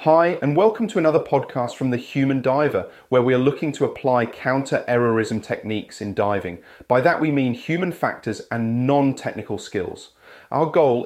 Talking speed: 170 wpm